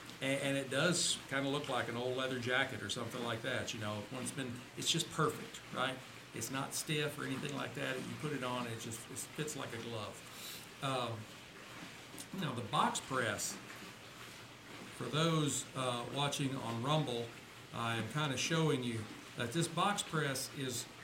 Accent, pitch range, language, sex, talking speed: American, 120-155 Hz, English, male, 180 wpm